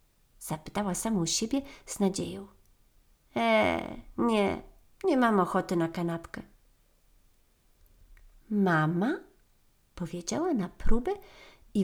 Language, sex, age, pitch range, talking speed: Polish, female, 40-59, 180-255 Hz, 85 wpm